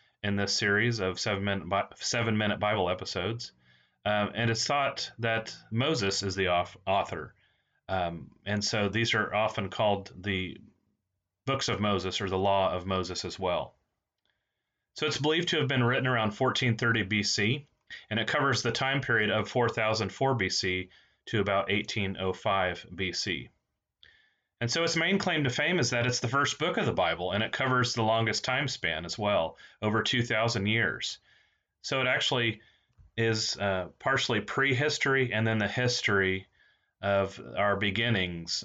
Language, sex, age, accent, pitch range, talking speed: English, male, 30-49, American, 95-115 Hz, 155 wpm